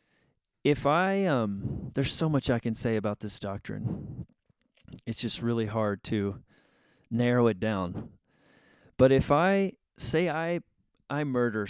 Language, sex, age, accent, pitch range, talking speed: English, male, 30-49, American, 110-130 Hz, 140 wpm